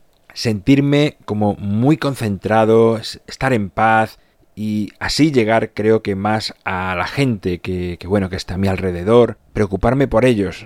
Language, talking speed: Spanish, 150 wpm